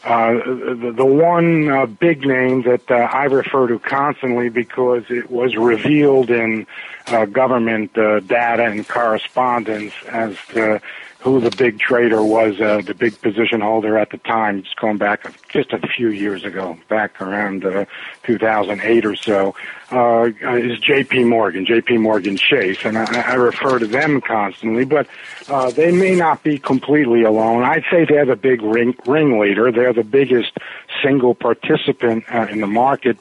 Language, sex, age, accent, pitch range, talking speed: English, male, 50-69, American, 110-130 Hz, 165 wpm